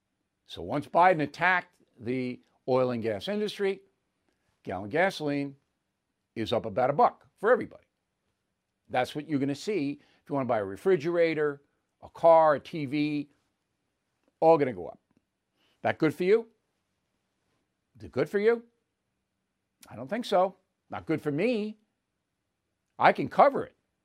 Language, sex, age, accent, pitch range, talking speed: English, male, 60-79, American, 135-200 Hz, 150 wpm